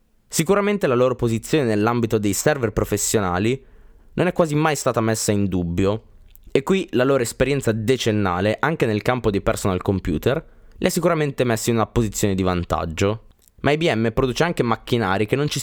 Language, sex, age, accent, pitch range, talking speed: Italian, male, 20-39, native, 95-125 Hz, 175 wpm